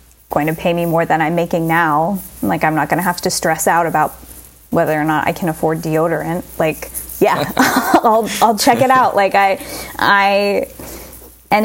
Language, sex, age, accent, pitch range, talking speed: English, female, 20-39, American, 150-200 Hz, 185 wpm